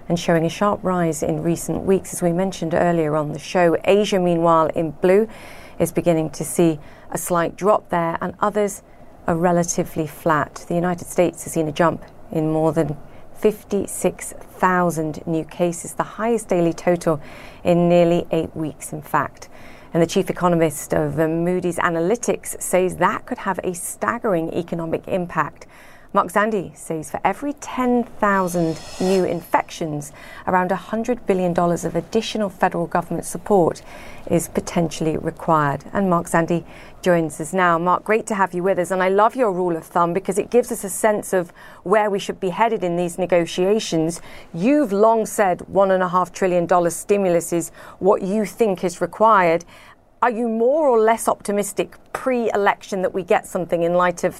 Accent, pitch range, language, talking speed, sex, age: British, 165-200 Hz, English, 165 wpm, female, 40-59